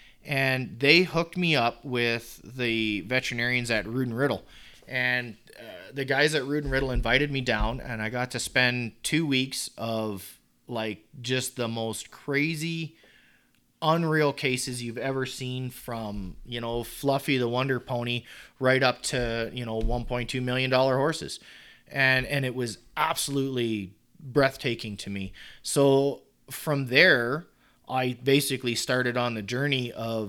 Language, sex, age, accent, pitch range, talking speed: English, male, 30-49, American, 115-135 Hz, 150 wpm